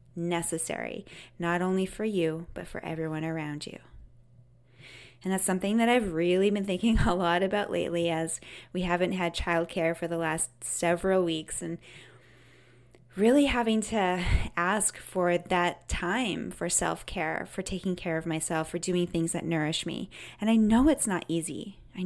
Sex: female